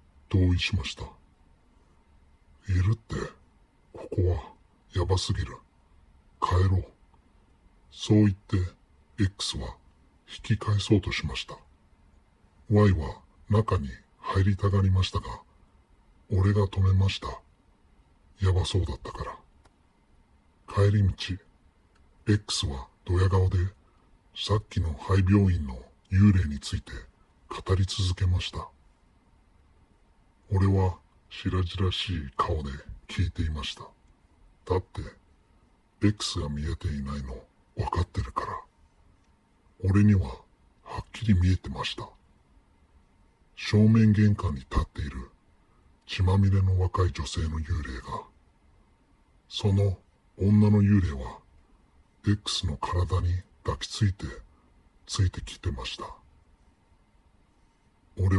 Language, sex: Japanese, female